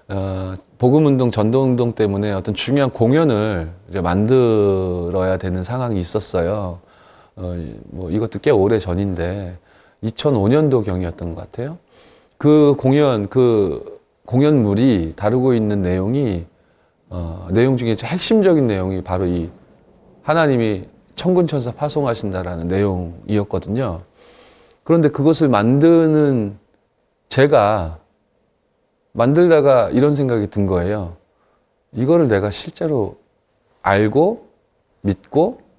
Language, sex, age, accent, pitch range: Korean, male, 30-49, native, 95-140 Hz